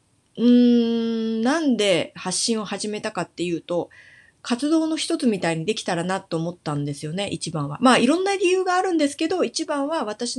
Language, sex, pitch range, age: Japanese, female, 190-305 Hz, 30-49